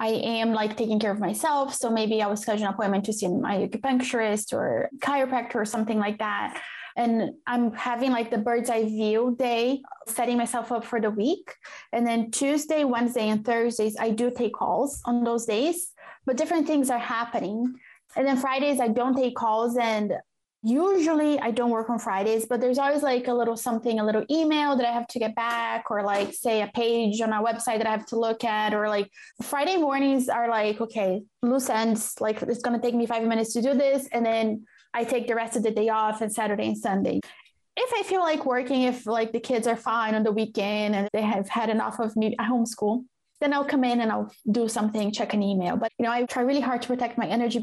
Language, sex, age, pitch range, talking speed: English, female, 20-39, 220-250 Hz, 225 wpm